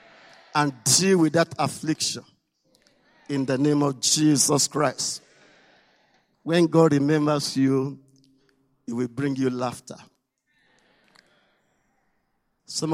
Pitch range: 135-215 Hz